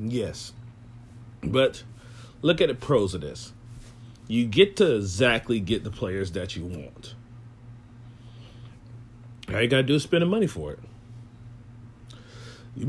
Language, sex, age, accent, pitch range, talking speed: English, male, 40-59, American, 115-145 Hz, 140 wpm